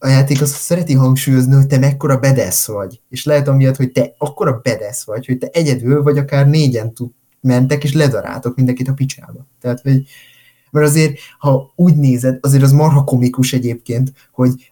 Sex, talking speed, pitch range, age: male, 175 wpm, 125-140 Hz, 20-39